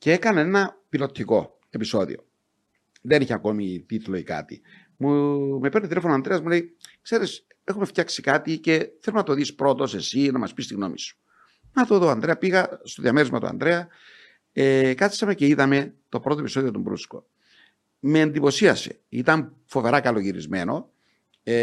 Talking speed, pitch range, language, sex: 165 wpm, 125-185 Hz, Greek, male